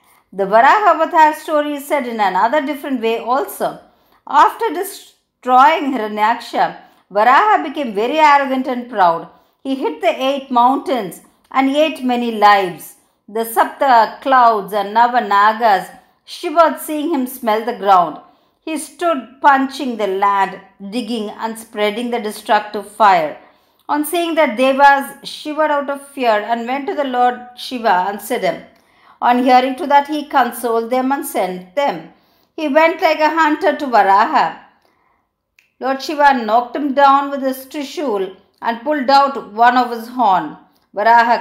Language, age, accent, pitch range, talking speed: Tamil, 50-69, native, 230-295 Hz, 150 wpm